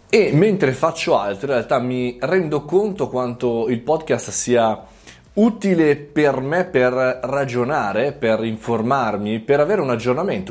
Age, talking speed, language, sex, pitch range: 20-39, 135 wpm, Italian, male, 115-150 Hz